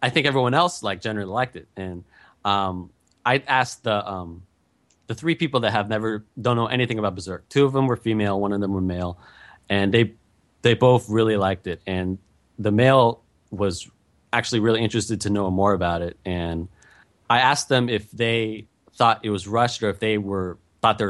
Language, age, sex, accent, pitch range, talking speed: English, 30-49, male, American, 95-120 Hz, 200 wpm